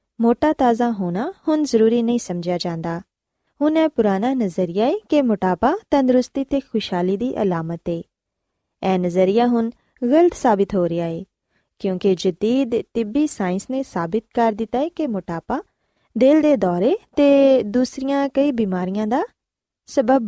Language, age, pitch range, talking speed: Punjabi, 20-39, 185-270 Hz, 145 wpm